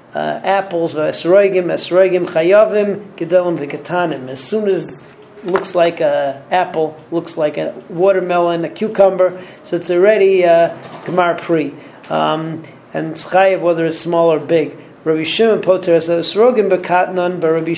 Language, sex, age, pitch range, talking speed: English, male, 40-59, 165-195 Hz, 100 wpm